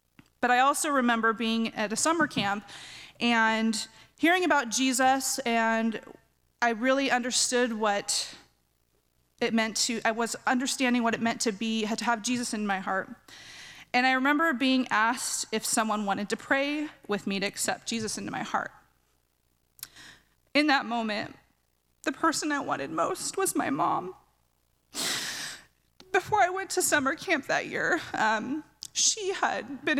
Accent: American